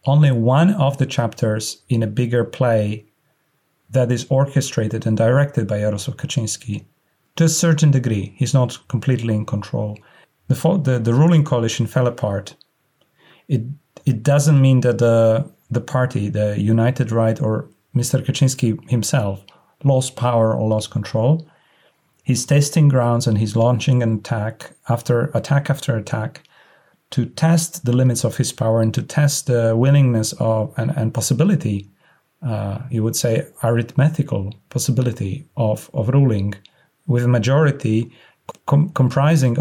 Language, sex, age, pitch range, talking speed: English, male, 40-59, 110-140 Hz, 145 wpm